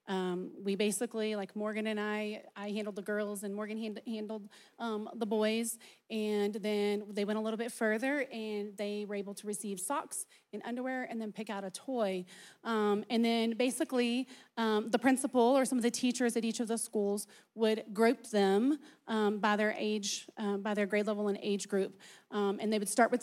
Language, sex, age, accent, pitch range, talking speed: English, female, 30-49, American, 205-230 Hz, 205 wpm